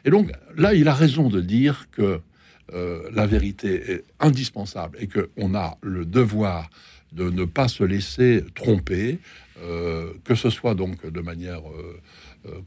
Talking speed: 165 wpm